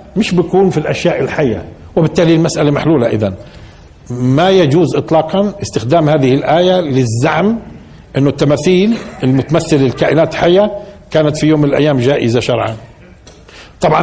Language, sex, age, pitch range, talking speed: Arabic, male, 50-69, 125-170 Hz, 120 wpm